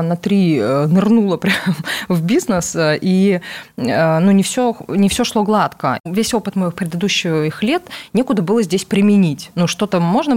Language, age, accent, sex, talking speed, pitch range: Russian, 20-39, native, female, 150 wpm, 165-210 Hz